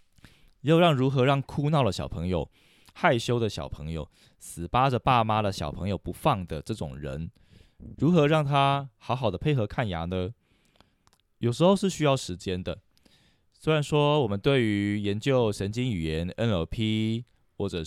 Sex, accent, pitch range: male, native, 90-130 Hz